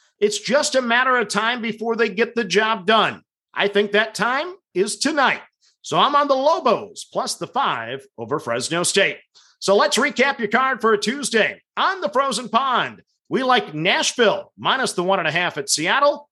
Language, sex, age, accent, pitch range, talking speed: English, male, 50-69, American, 195-265 Hz, 190 wpm